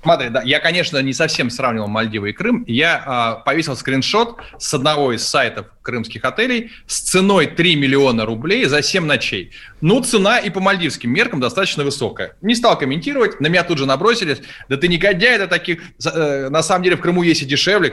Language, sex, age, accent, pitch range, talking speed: Russian, male, 20-39, native, 130-180 Hz, 195 wpm